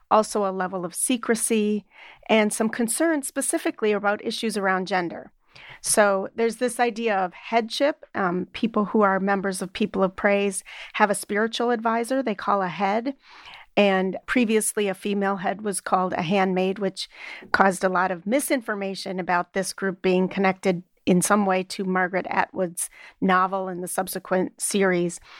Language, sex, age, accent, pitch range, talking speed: English, female, 40-59, American, 190-235 Hz, 160 wpm